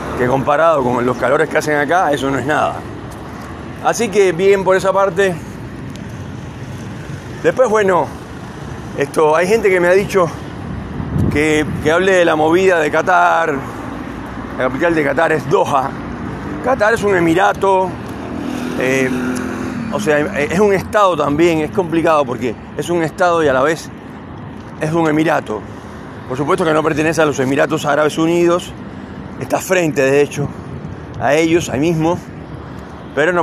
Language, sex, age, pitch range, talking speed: Spanish, male, 40-59, 130-175 Hz, 155 wpm